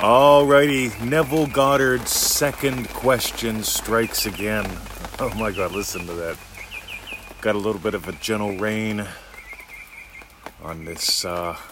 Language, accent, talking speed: English, American, 125 wpm